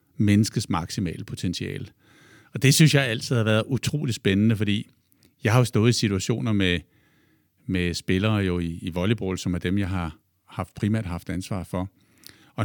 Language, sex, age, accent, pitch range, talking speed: Danish, male, 60-79, native, 100-130 Hz, 175 wpm